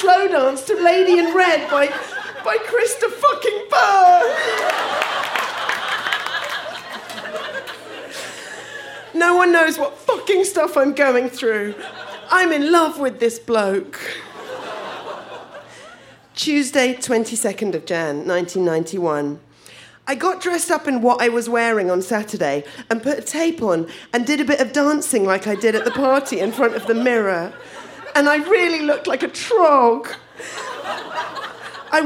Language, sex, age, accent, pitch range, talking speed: English, female, 40-59, British, 235-380 Hz, 135 wpm